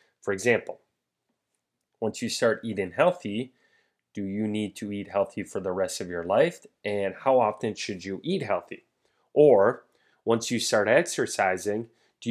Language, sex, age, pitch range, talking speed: English, male, 30-49, 95-120 Hz, 155 wpm